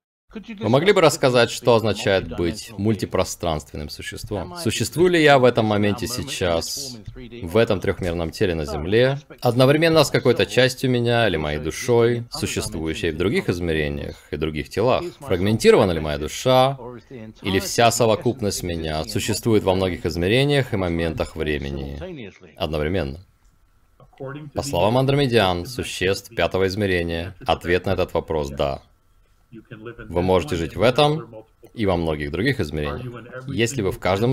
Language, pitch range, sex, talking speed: Russian, 85-125 Hz, male, 135 wpm